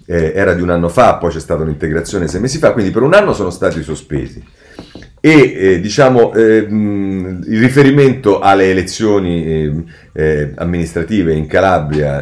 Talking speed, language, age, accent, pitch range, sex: 155 wpm, Italian, 40-59, native, 80-125 Hz, male